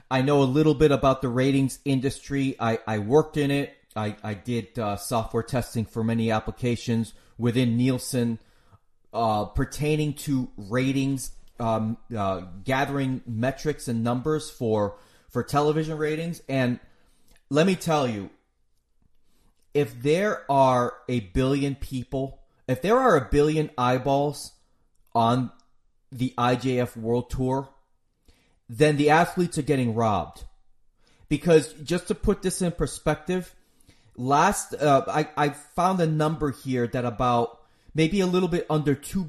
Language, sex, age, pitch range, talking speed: English, male, 30-49, 115-150 Hz, 135 wpm